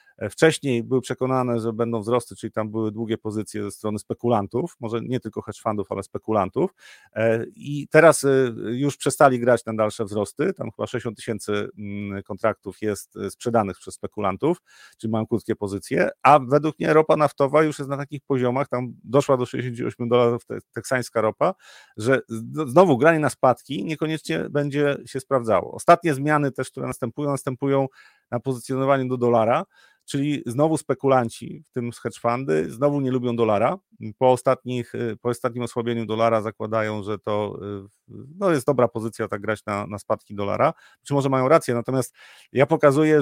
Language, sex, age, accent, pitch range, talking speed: Polish, male, 40-59, native, 110-140 Hz, 155 wpm